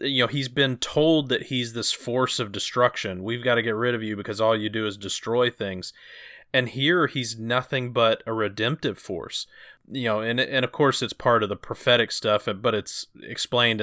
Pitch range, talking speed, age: 105-125 Hz, 210 wpm, 30-49